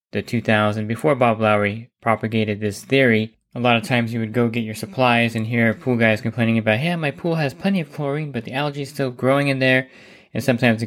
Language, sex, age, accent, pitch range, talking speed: English, male, 20-39, American, 110-125 Hz, 230 wpm